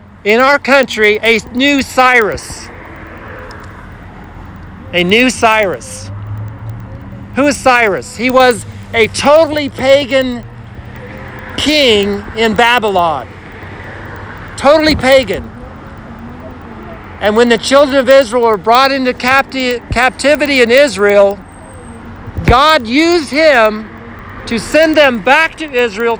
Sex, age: male, 50-69